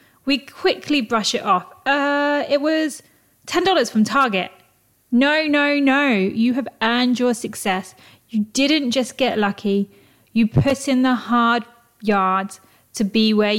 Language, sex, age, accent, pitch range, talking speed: English, female, 30-49, British, 200-255 Hz, 145 wpm